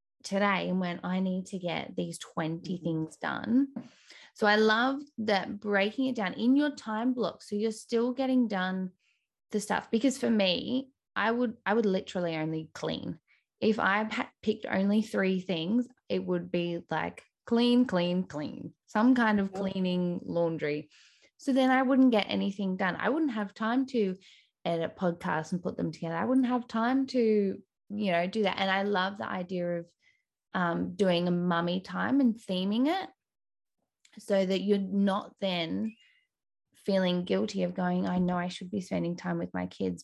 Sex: female